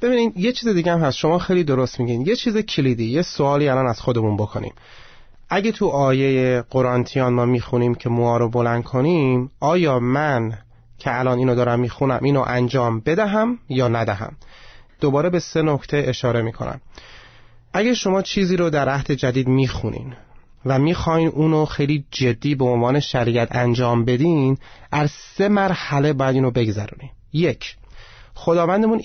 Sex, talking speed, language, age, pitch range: male, 145 wpm, Persian, 30-49, 120-150 Hz